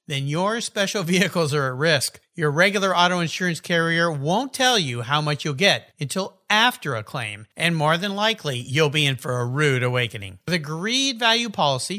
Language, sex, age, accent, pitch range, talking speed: English, male, 50-69, American, 135-215 Hz, 195 wpm